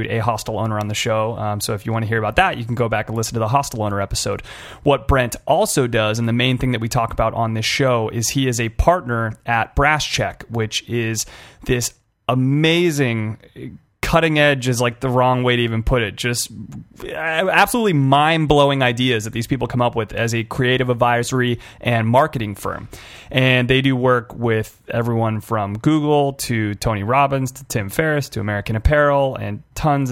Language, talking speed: English, 200 wpm